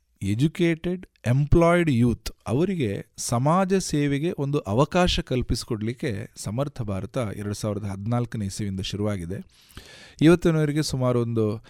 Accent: native